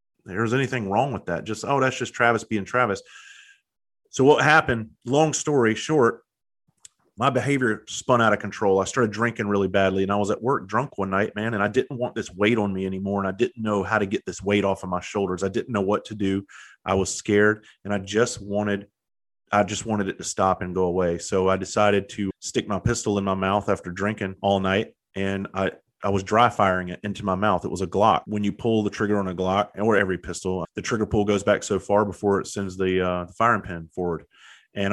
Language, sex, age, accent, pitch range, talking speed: English, male, 30-49, American, 95-115 Hz, 235 wpm